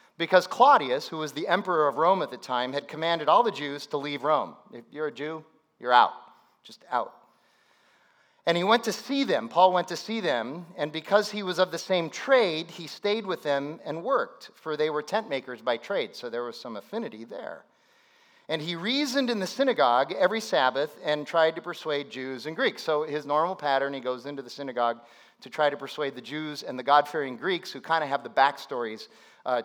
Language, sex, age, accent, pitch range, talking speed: English, male, 40-59, American, 140-180 Hz, 215 wpm